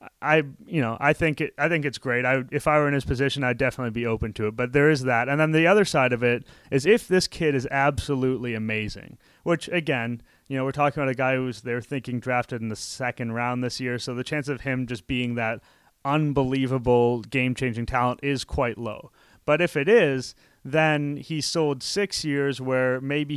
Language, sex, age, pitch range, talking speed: English, male, 30-49, 120-145 Hz, 220 wpm